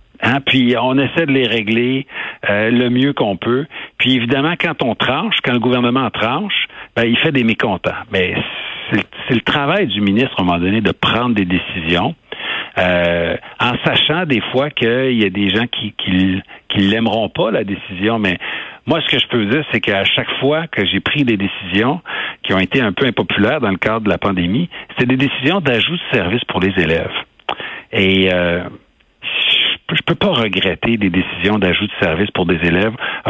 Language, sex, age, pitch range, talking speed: French, male, 60-79, 100-125 Hz, 205 wpm